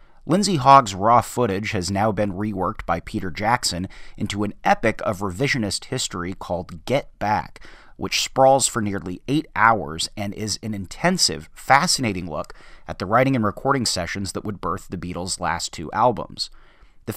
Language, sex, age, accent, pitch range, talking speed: English, male, 30-49, American, 95-120 Hz, 165 wpm